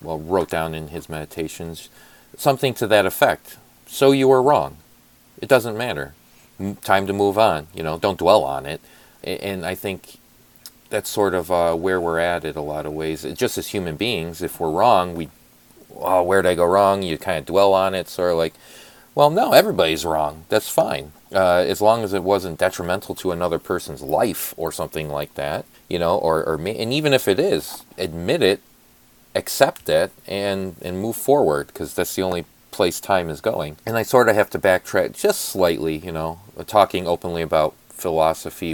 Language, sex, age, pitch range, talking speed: English, male, 40-59, 80-95 Hz, 195 wpm